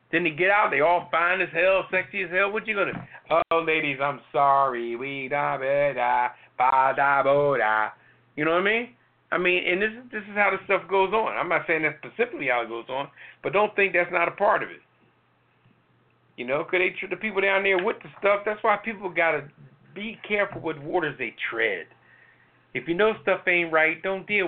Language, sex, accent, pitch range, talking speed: English, male, American, 145-200 Hz, 225 wpm